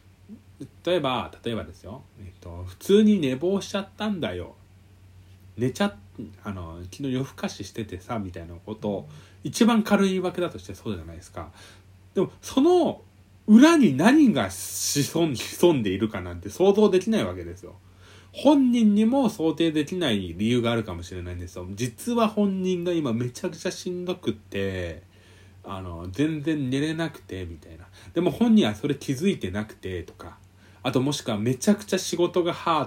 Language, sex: Japanese, male